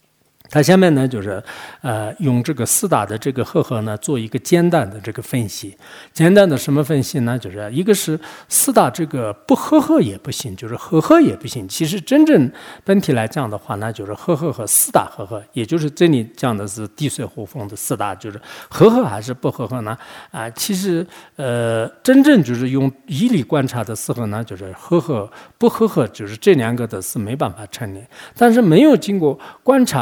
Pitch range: 110-170 Hz